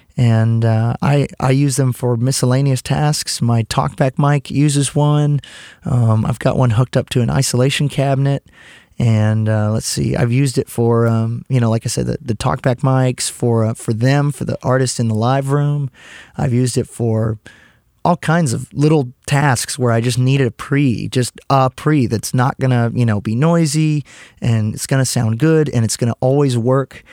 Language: English